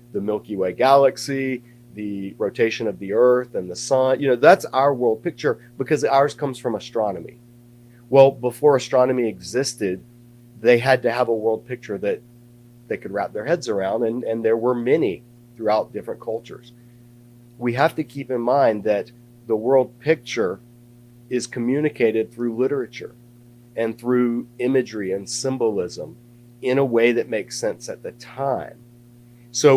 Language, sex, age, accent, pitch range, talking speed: English, male, 40-59, American, 115-125 Hz, 155 wpm